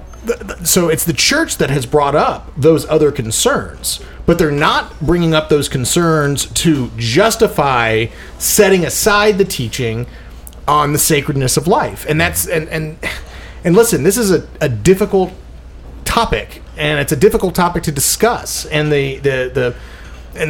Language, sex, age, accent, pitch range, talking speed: English, male, 30-49, American, 130-190 Hz, 155 wpm